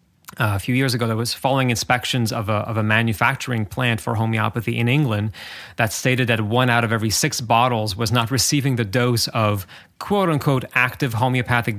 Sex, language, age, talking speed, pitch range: male, English, 30-49, 185 wpm, 110-130 Hz